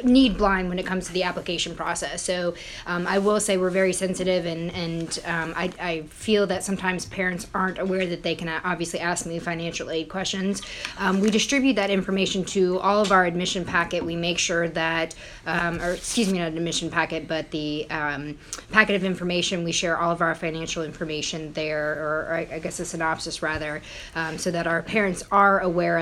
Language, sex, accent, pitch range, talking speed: English, female, American, 155-180 Hz, 200 wpm